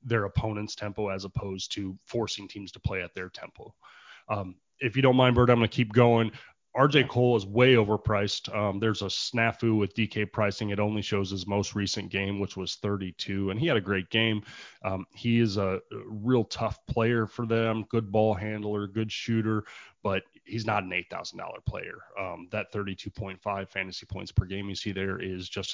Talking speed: 195 wpm